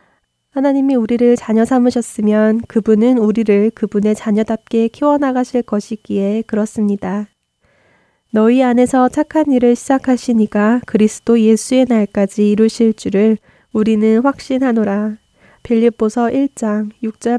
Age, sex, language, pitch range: 20-39, female, Korean, 210-240 Hz